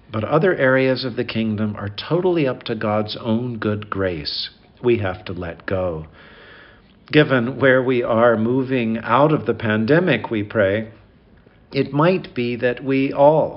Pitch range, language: 105-130 Hz, English